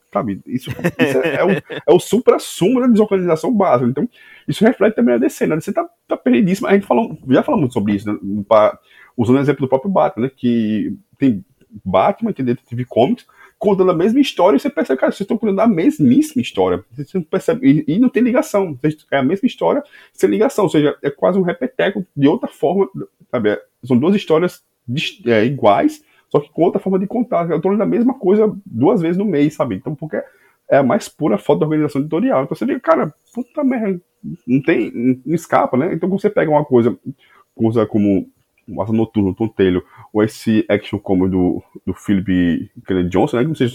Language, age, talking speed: Portuguese, 20-39, 215 wpm